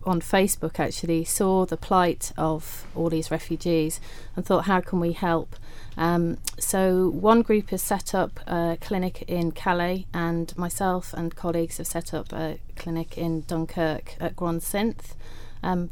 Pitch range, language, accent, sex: 160-180 Hz, English, British, female